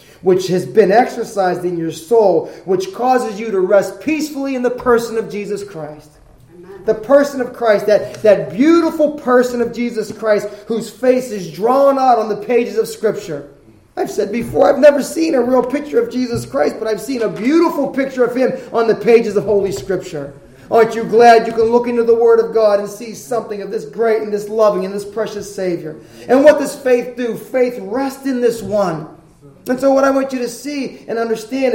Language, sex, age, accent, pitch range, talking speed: English, male, 30-49, American, 175-245 Hz, 210 wpm